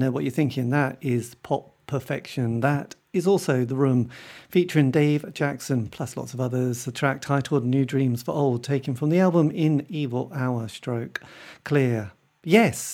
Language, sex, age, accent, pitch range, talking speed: English, male, 40-59, British, 135-180 Hz, 170 wpm